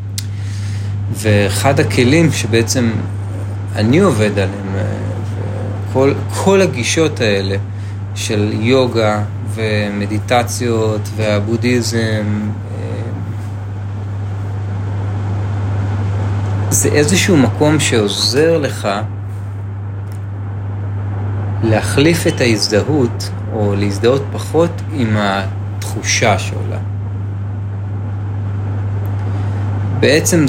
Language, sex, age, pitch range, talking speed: Hebrew, male, 30-49, 100-110 Hz, 55 wpm